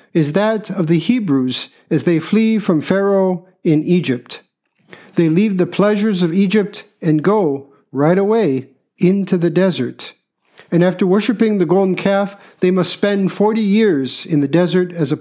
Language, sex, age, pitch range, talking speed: English, male, 50-69, 155-195 Hz, 160 wpm